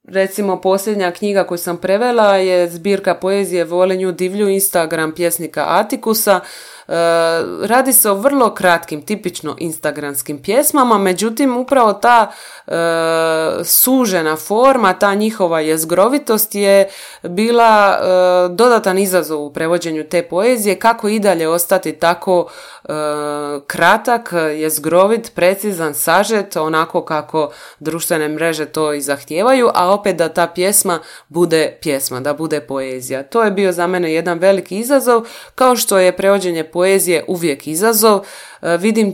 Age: 20-39